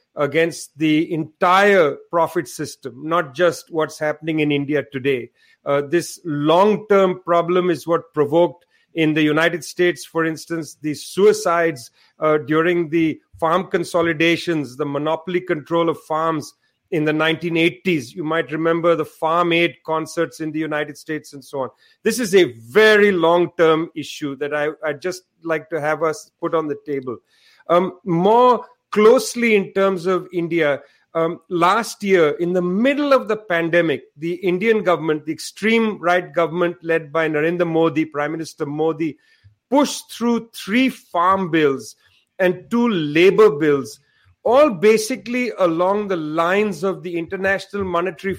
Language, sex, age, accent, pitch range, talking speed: English, male, 40-59, Indian, 155-190 Hz, 150 wpm